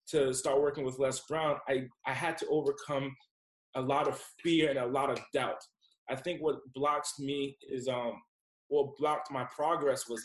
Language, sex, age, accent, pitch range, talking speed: English, male, 20-39, American, 135-175 Hz, 185 wpm